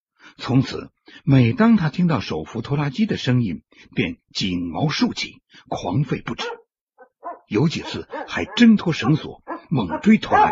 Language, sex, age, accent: Chinese, male, 60-79, native